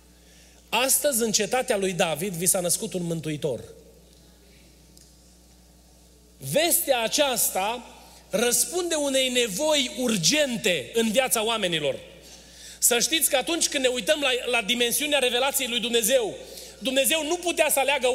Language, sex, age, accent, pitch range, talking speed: Romanian, male, 30-49, native, 180-270 Hz, 120 wpm